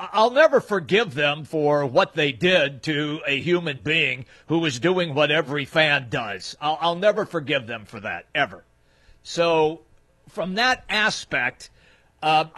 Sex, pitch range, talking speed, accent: male, 150-200 Hz, 155 wpm, American